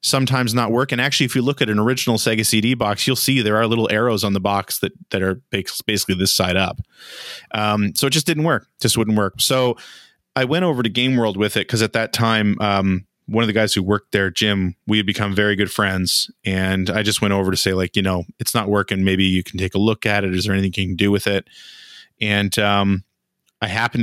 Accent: American